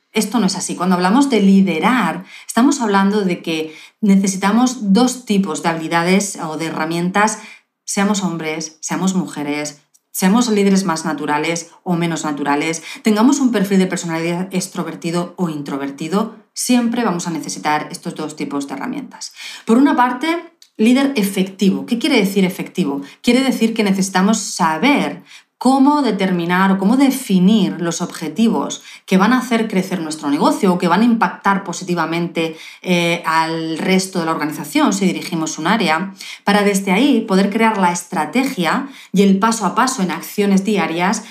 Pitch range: 170-225 Hz